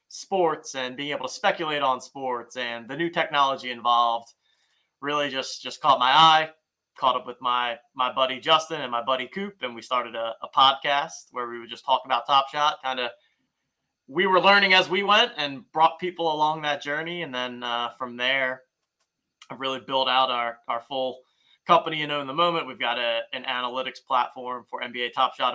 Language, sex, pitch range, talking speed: English, male, 120-145 Hz, 200 wpm